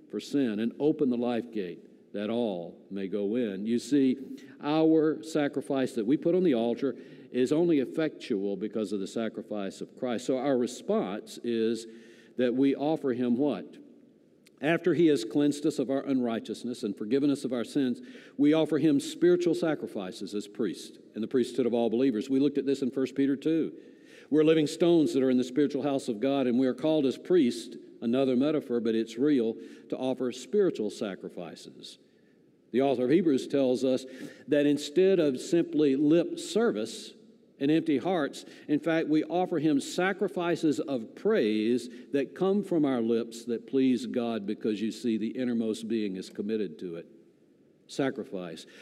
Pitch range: 115-155 Hz